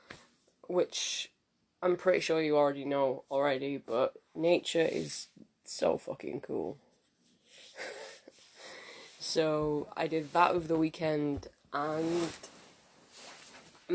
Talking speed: 100 wpm